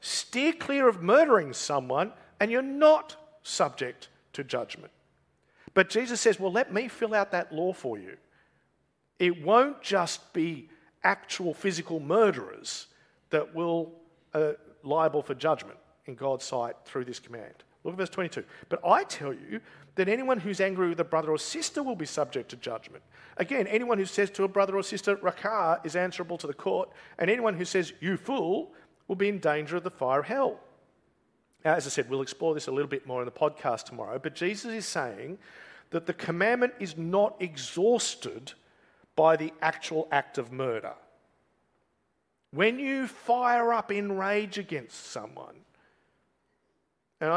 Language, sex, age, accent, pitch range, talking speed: English, male, 50-69, Australian, 155-220 Hz, 170 wpm